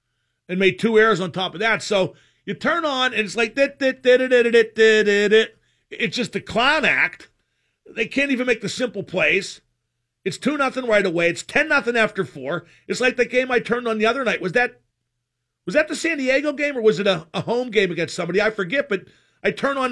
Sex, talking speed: male, 235 wpm